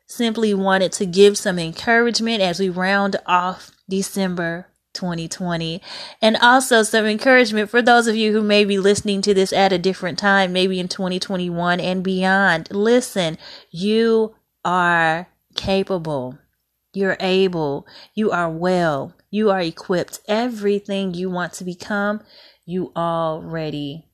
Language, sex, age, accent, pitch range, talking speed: English, female, 30-49, American, 175-210 Hz, 135 wpm